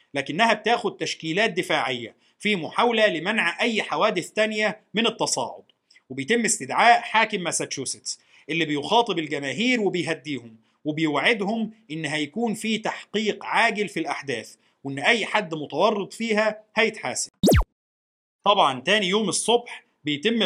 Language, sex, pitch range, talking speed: Arabic, male, 155-225 Hz, 115 wpm